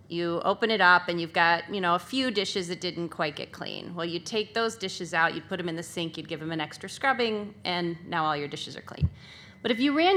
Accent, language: American, English